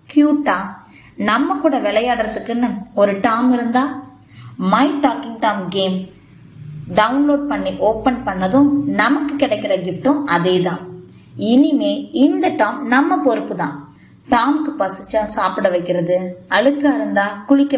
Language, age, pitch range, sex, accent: Tamil, 20-39, 195-280 Hz, female, native